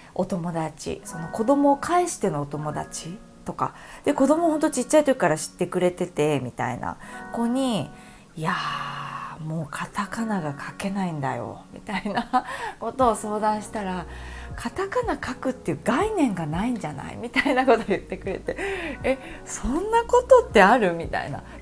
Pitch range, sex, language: 170-270 Hz, female, Japanese